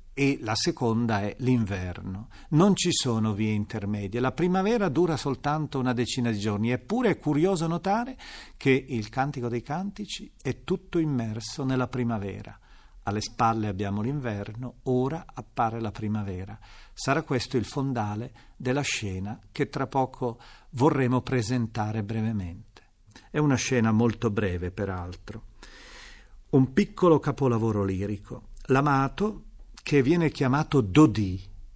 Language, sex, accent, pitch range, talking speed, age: Italian, male, native, 110-150 Hz, 125 wpm, 50-69